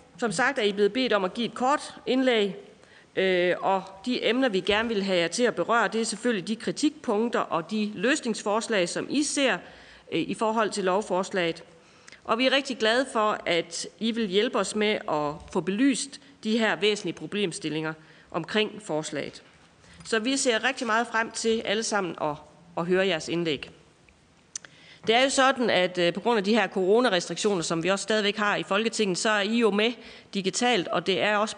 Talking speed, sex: 190 wpm, female